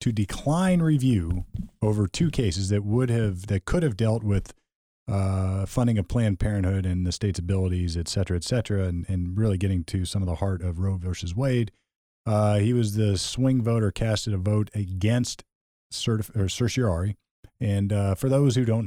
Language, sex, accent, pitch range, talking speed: English, male, American, 100-120 Hz, 190 wpm